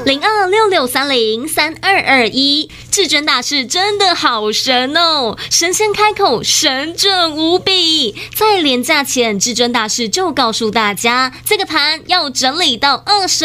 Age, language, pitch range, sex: 20-39, Chinese, 255-350 Hz, female